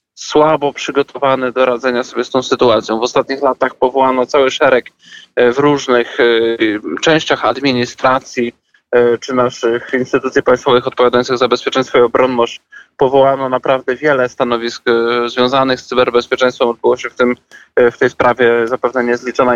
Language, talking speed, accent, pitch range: Polish, 130 wpm, native, 120-135 Hz